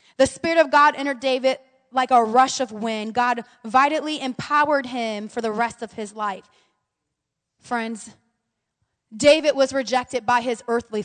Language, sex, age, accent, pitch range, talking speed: English, female, 20-39, American, 230-300 Hz, 150 wpm